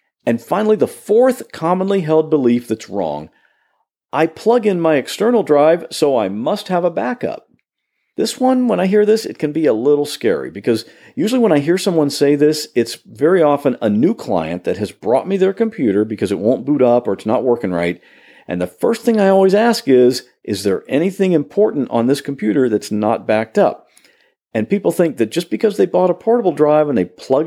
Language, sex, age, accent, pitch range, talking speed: English, male, 50-69, American, 120-200 Hz, 210 wpm